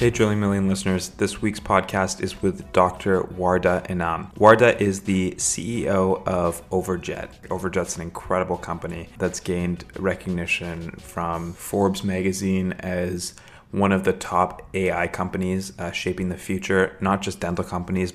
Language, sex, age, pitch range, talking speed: English, male, 20-39, 90-95 Hz, 140 wpm